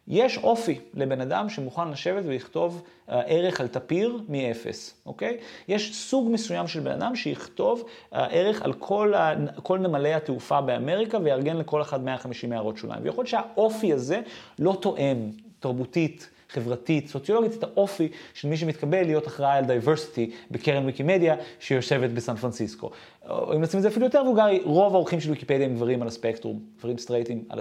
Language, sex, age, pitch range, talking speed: Hebrew, male, 30-49, 125-190 Hz, 165 wpm